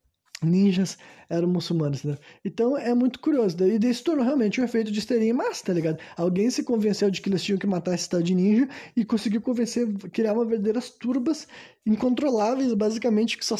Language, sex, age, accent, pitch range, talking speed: Portuguese, male, 20-39, Brazilian, 180-225 Hz, 195 wpm